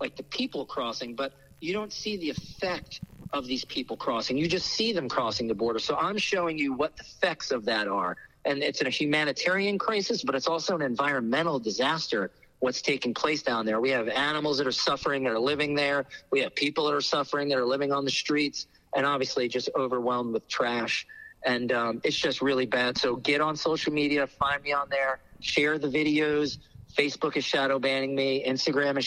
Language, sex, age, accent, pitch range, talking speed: English, male, 40-59, American, 125-150 Hz, 210 wpm